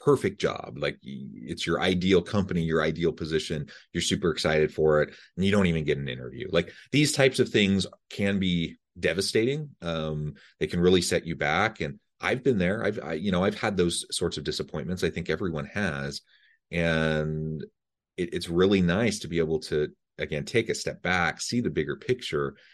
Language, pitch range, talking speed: English, 75-100 Hz, 195 wpm